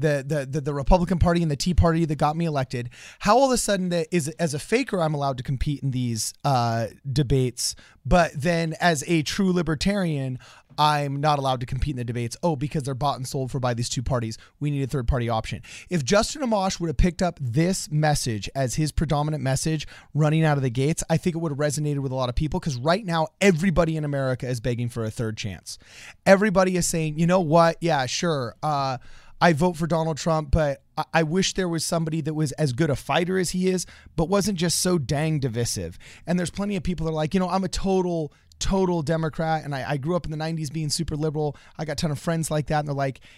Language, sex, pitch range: English, male, 135-170 Hz